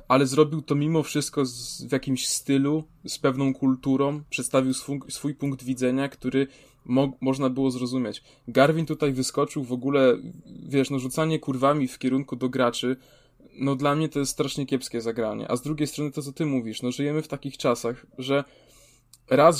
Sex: male